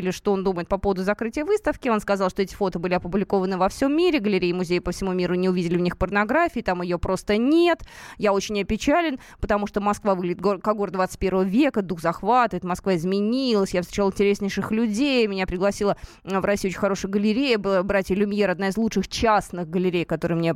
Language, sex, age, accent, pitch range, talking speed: Russian, female, 20-39, native, 190-250 Hz, 200 wpm